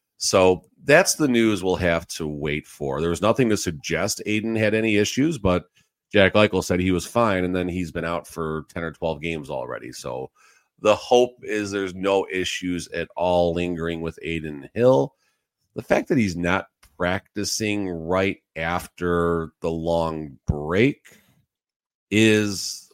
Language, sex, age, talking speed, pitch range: English, male, 40-59, 160 wpm, 85-95 Hz